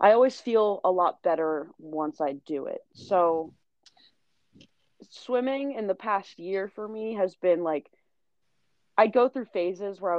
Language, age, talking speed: English, 20-39, 160 wpm